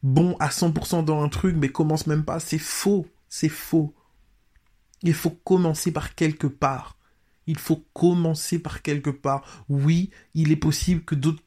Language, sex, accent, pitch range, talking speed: French, male, French, 145-170 Hz, 170 wpm